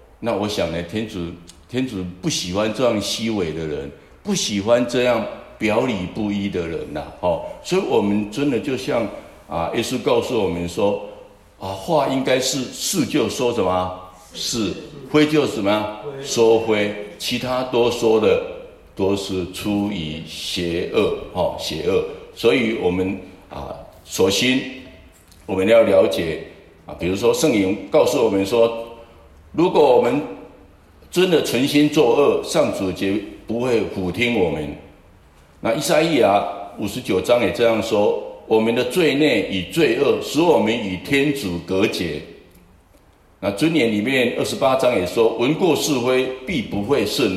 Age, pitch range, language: 60-79, 95-130 Hz, Chinese